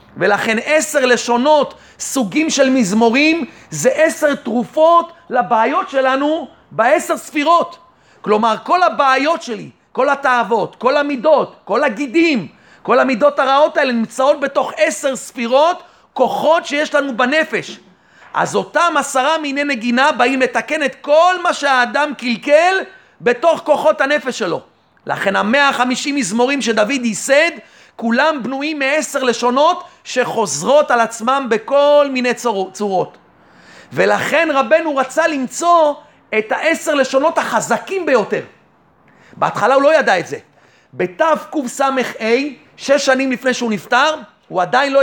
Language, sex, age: Hebrew, male, 40-59